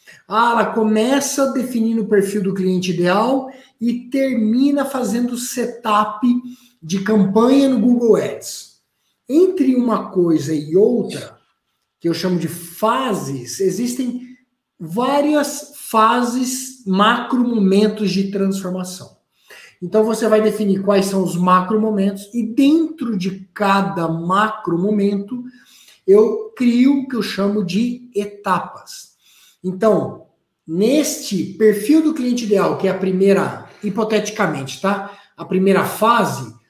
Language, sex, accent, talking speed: Portuguese, male, Brazilian, 115 wpm